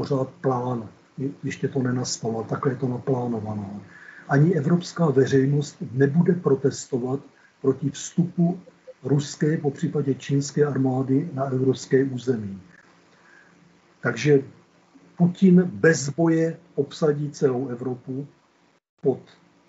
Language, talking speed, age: Czech, 95 wpm, 50-69